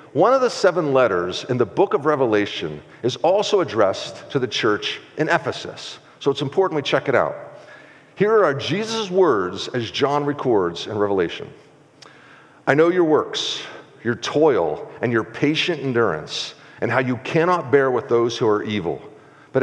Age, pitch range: 50-69, 115-150 Hz